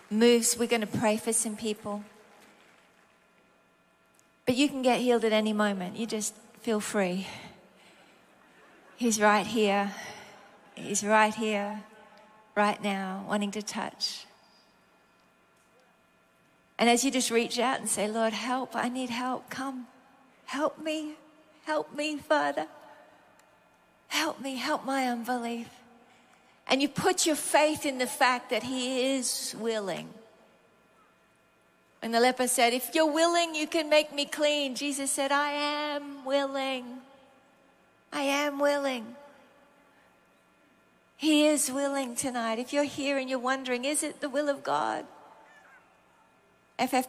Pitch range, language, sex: 210-280 Hz, English, female